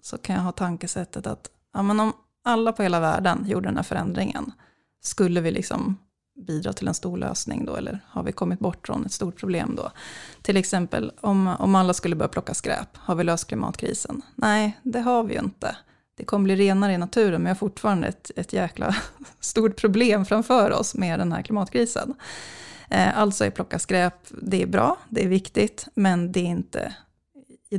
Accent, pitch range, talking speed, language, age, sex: Swedish, 185-215 Hz, 195 wpm, English, 30-49, female